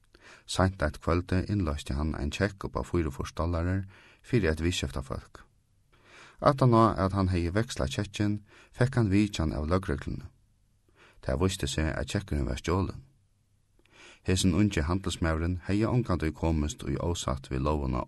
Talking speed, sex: 150 wpm, male